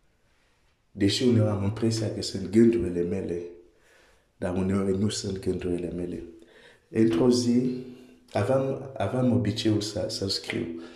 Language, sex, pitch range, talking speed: Romanian, male, 100-115 Hz, 155 wpm